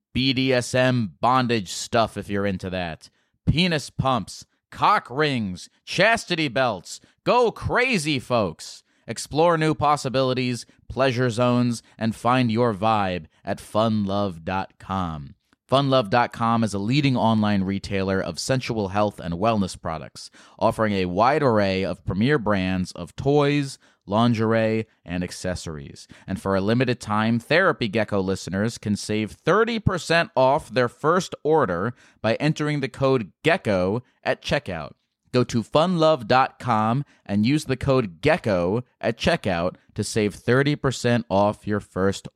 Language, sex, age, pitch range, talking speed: English, male, 30-49, 100-130 Hz, 125 wpm